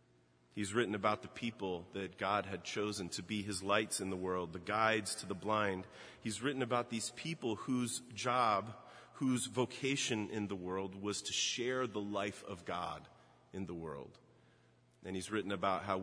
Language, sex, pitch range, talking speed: English, male, 95-110 Hz, 180 wpm